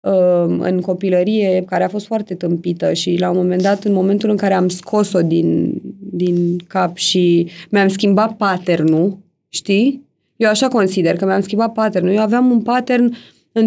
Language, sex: Romanian, female